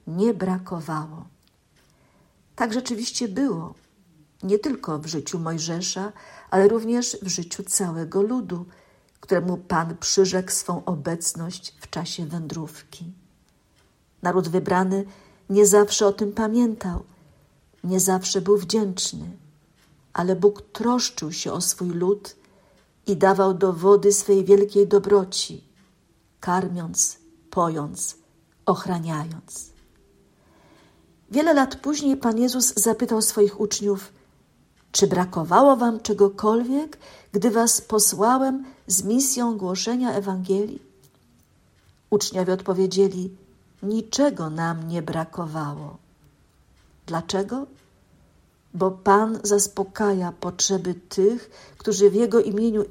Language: Polish